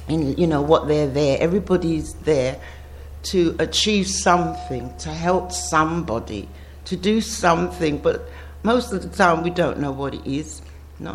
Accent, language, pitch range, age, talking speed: British, English, 140-215 Hz, 60-79, 155 wpm